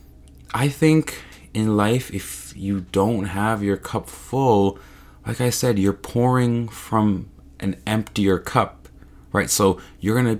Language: English